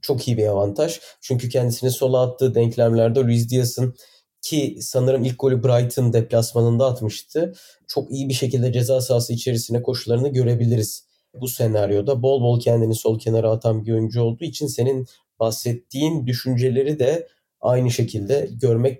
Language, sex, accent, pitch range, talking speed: Turkish, male, native, 115-135 Hz, 145 wpm